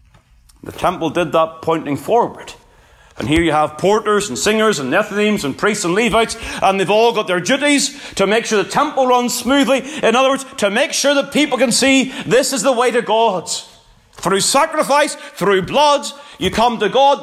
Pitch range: 160-265 Hz